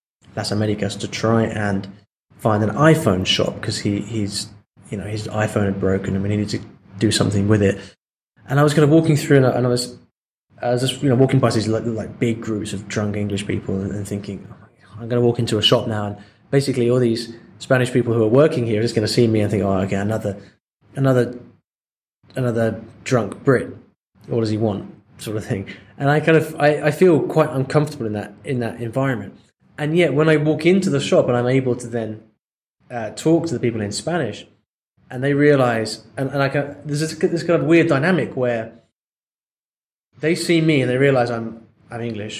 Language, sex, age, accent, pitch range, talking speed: English, male, 20-39, British, 105-135 Hz, 220 wpm